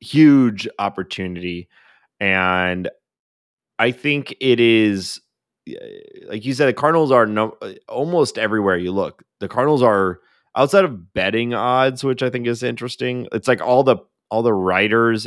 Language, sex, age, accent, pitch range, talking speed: English, male, 20-39, American, 90-110 Hz, 145 wpm